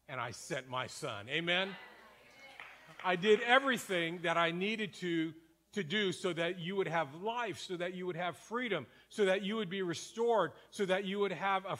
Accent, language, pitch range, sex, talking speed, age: American, English, 175-215 Hz, male, 200 wpm, 40-59